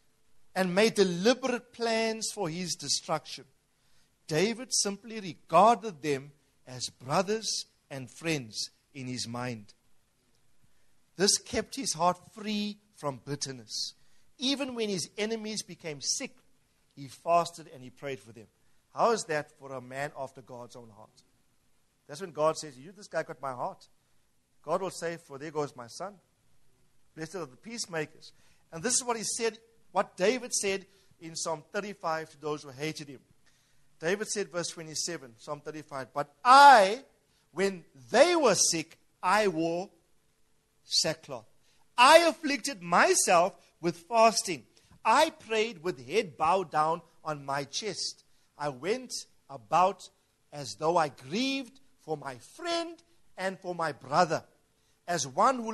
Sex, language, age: male, English, 50-69